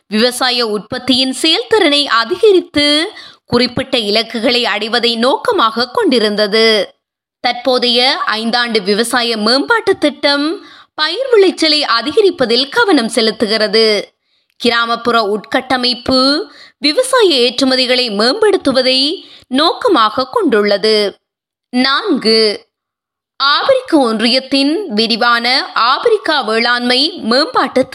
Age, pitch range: 20-39, 235-315 Hz